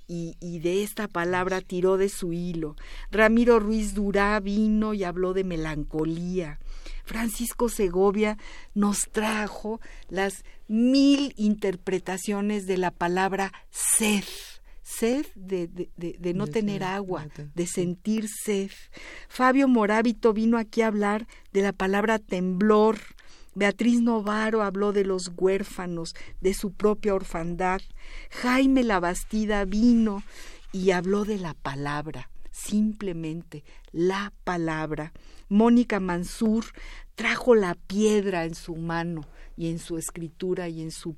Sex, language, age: female, Spanish, 50-69